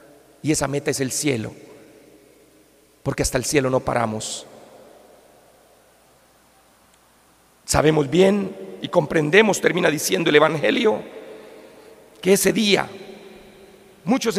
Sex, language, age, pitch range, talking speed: male, Spanish, 40-59, 145-230 Hz, 100 wpm